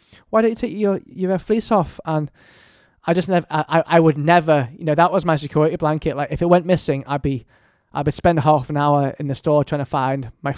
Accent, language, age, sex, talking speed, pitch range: British, English, 20-39, male, 245 wpm, 140-155 Hz